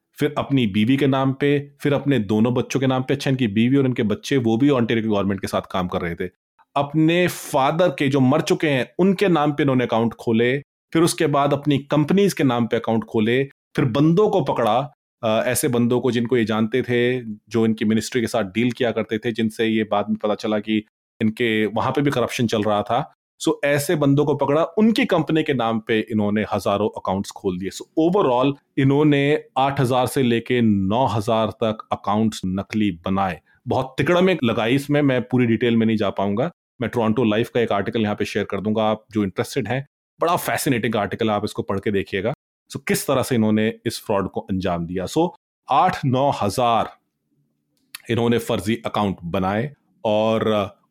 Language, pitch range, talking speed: Punjabi, 110-140 Hz, 195 wpm